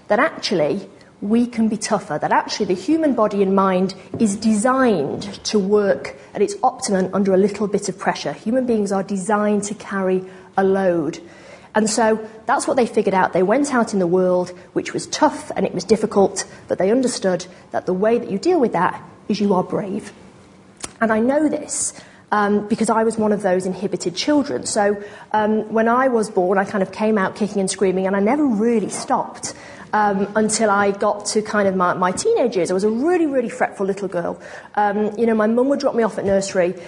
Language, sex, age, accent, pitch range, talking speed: English, female, 40-59, British, 195-225 Hz, 215 wpm